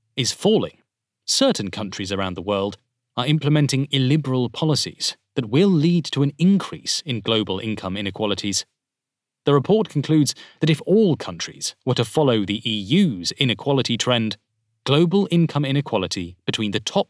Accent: British